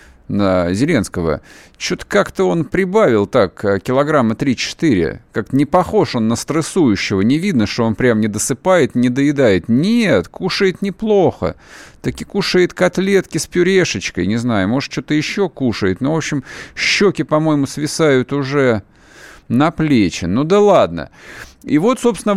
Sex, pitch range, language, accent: male, 120-175 Hz, Russian, native